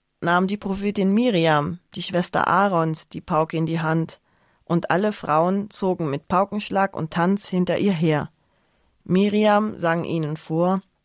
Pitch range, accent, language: 160-200 Hz, German, German